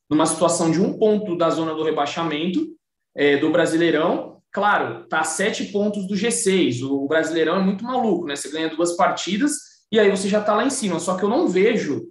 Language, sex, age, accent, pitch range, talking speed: Portuguese, male, 20-39, Brazilian, 170-230 Hz, 205 wpm